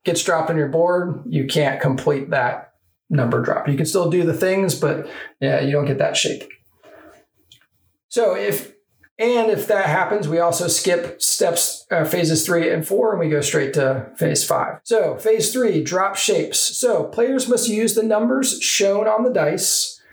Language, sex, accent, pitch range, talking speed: English, male, American, 160-210 Hz, 180 wpm